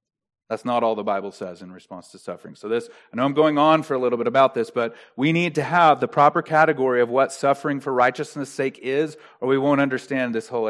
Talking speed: 245 wpm